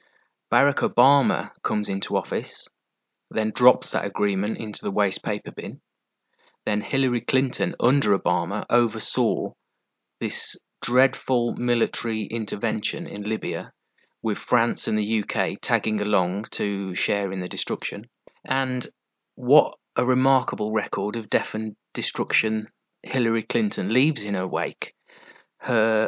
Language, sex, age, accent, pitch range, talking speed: English, male, 30-49, British, 105-125 Hz, 125 wpm